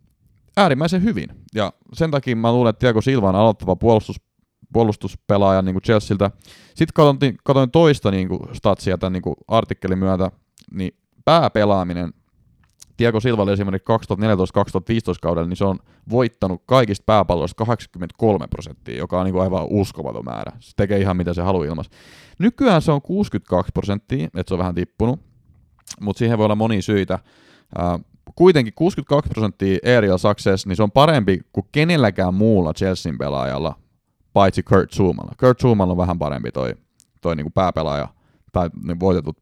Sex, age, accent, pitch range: male, 30-49, native, 95-115 Hz